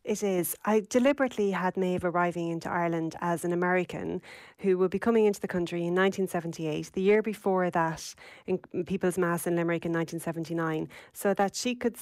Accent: Irish